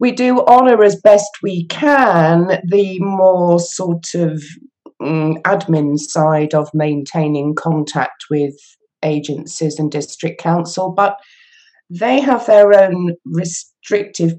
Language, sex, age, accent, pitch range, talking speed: English, female, 40-59, British, 150-185 Hz, 115 wpm